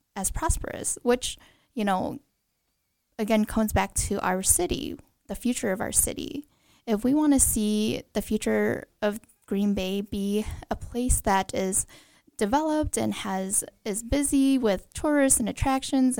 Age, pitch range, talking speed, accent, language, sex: 10-29, 205-255 Hz, 150 wpm, American, English, female